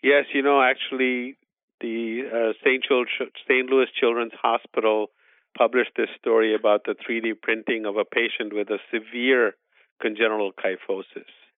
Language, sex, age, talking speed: English, male, 50-69, 130 wpm